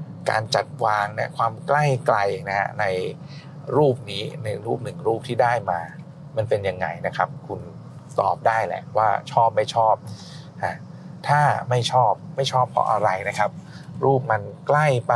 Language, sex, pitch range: Thai, male, 115-150 Hz